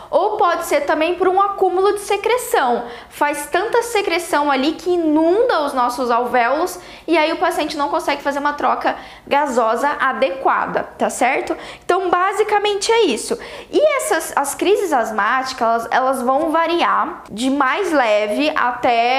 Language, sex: Portuguese, female